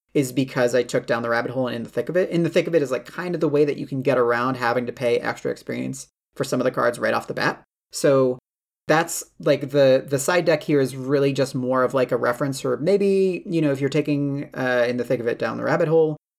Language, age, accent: English, 30-49, American